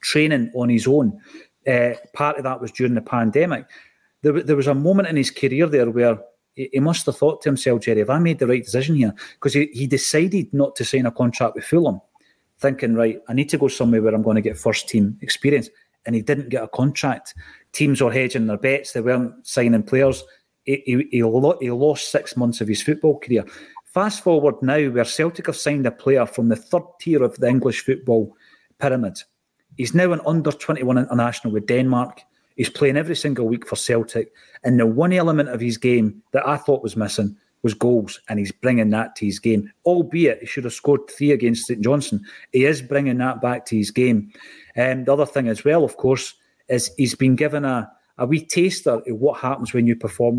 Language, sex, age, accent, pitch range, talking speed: English, male, 30-49, British, 115-145 Hz, 215 wpm